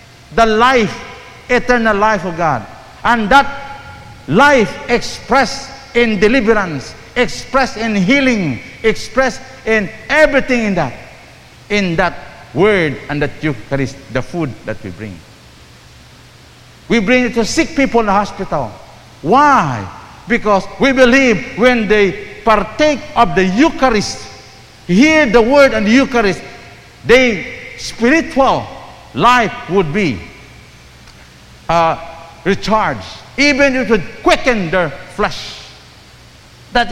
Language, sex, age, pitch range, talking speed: English, male, 50-69, 180-255 Hz, 115 wpm